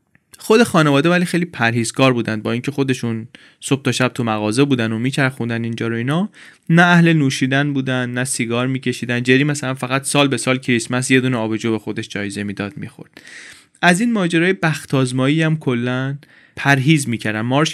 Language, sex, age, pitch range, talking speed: Persian, male, 30-49, 120-160 Hz, 165 wpm